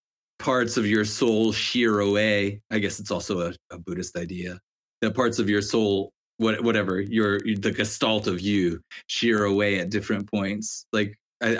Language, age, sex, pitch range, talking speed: English, 30-49, male, 100-110 Hz, 170 wpm